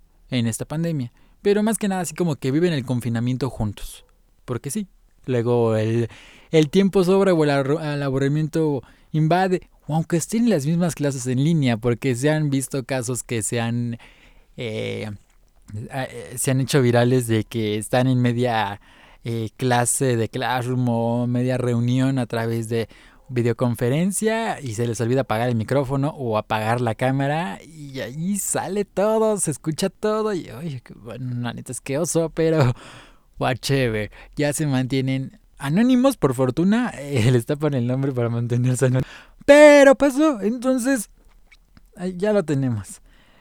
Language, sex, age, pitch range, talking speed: Spanish, male, 20-39, 120-170 Hz, 150 wpm